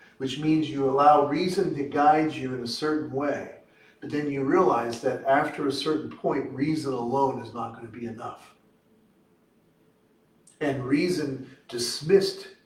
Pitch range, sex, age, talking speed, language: 120-150 Hz, male, 50-69, 150 wpm, English